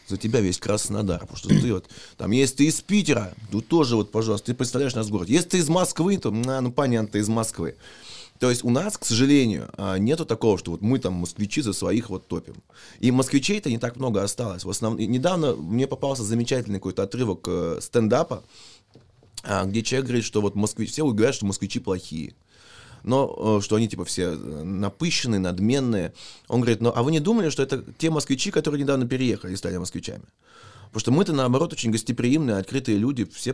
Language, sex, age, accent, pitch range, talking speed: Russian, male, 20-39, native, 100-130 Hz, 195 wpm